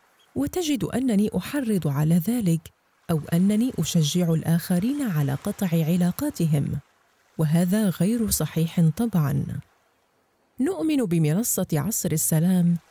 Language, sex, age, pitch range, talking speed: Arabic, female, 30-49, 165-230 Hz, 95 wpm